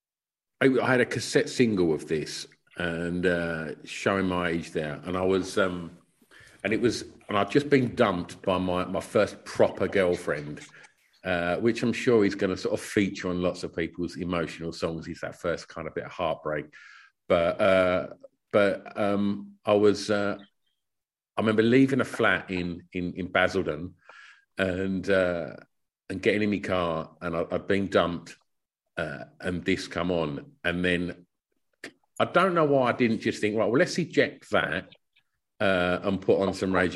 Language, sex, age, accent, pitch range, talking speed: English, male, 50-69, British, 85-105 Hz, 180 wpm